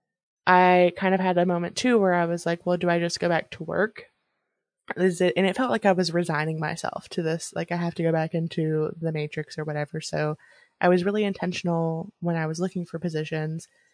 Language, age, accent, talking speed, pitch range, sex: English, 20-39, American, 230 wpm, 160-185 Hz, female